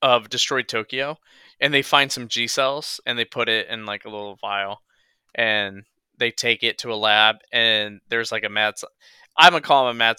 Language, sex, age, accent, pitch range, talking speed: English, male, 20-39, American, 110-140 Hz, 205 wpm